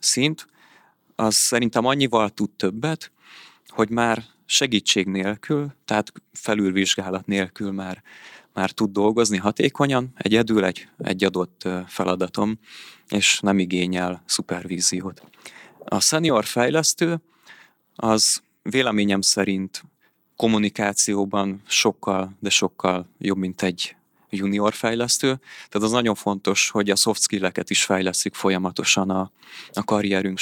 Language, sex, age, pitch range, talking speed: Hungarian, male, 30-49, 95-115 Hz, 110 wpm